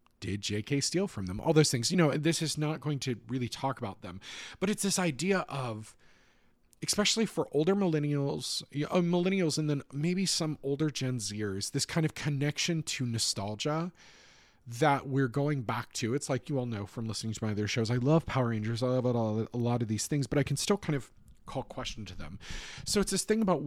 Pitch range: 115-155 Hz